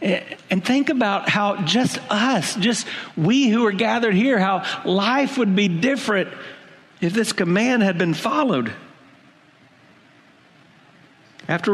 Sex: male